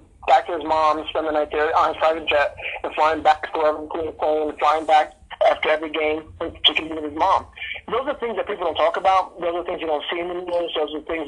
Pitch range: 145-170 Hz